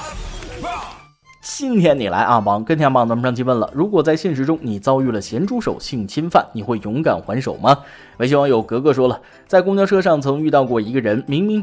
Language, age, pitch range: Chinese, 20-39, 115-170 Hz